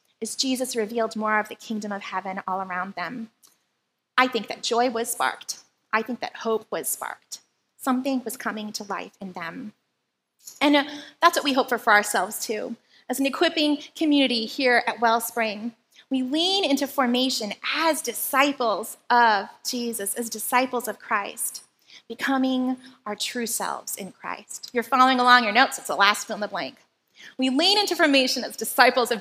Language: English